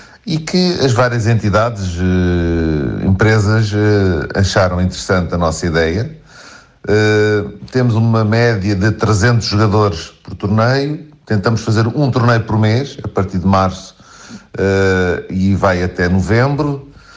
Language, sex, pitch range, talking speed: Portuguese, male, 95-115 Hz, 115 wpm